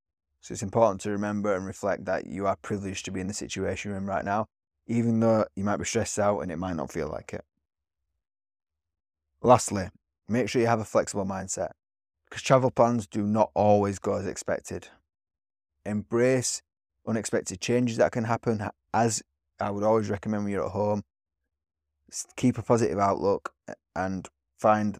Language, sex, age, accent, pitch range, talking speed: English, male, 20-39, British, 80-110 Hz, 175 wpm